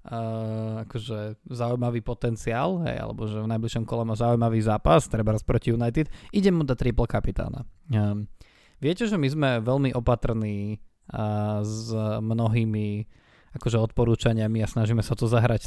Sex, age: male, 20-39